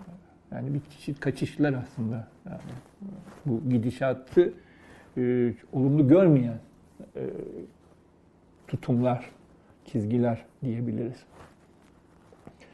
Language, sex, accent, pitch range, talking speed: Turkish, male, native, 125-150 Hz, 70 wpm